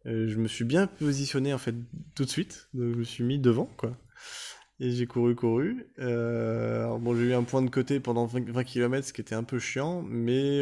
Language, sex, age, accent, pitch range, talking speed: French, male, 20-39, French, 110-125 Hz, 225 wpm